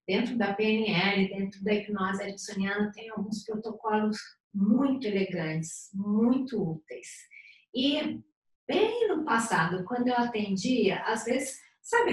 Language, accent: Portuguese, Brazilian